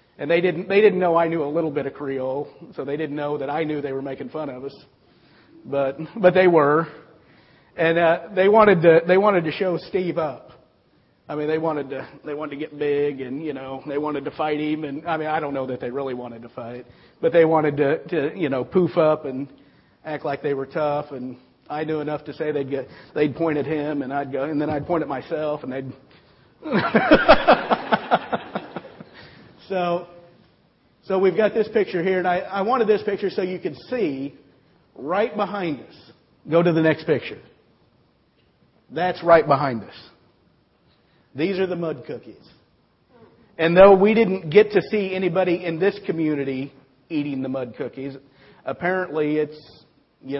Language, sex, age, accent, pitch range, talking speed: English, male, 50-69, American, 145-170 Hz, 185 wpm